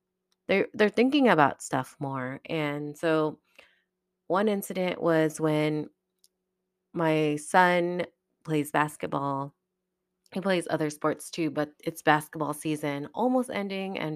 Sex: female